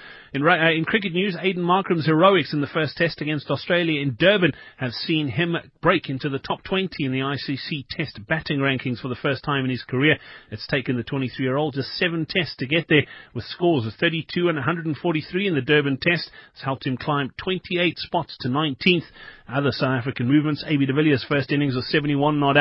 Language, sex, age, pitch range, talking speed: English, male, 30-49, 130-170 Hz, 205 wpm